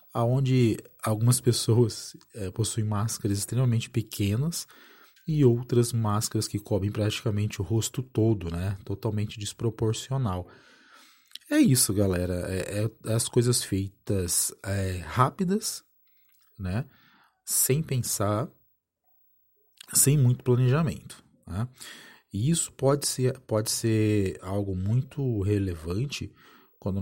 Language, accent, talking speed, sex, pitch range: Portuguese, Brazilian, 100 wpm, male, 100-125 Hz